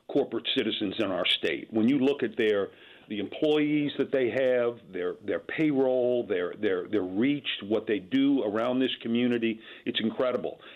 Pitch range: 115-155 Hz